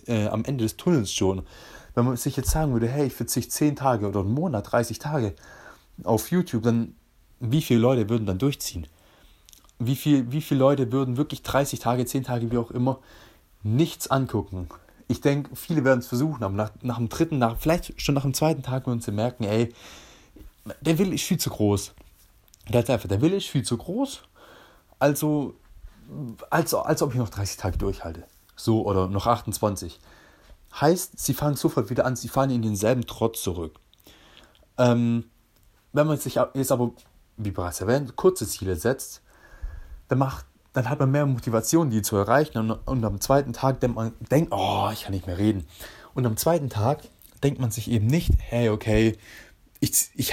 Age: 30-49